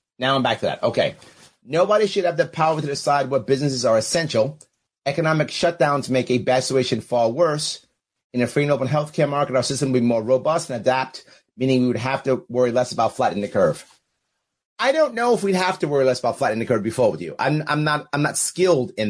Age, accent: 30-49, American